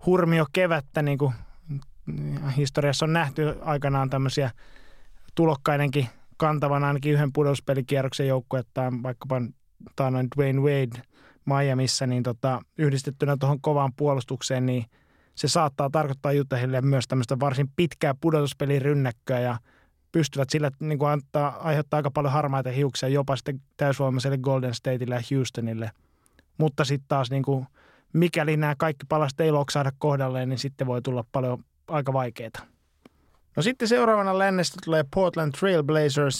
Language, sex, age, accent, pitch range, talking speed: Finnish, male, 20-39, native, 130-150 Hz, 130 wpm